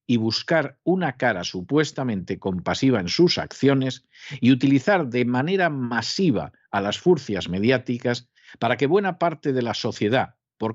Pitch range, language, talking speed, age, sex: 110-155 Hz, Spanish, 145 wpm, 50-69, male